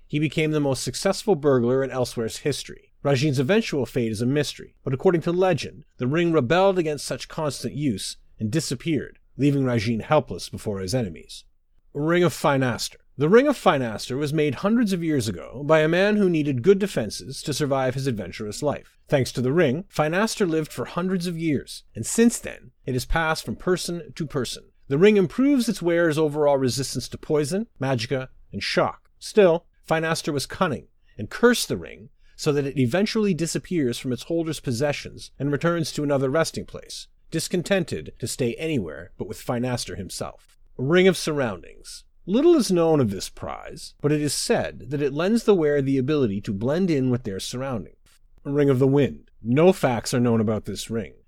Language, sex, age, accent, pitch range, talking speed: English, male, 30-49, American, 125-170 Hz, 185 wpm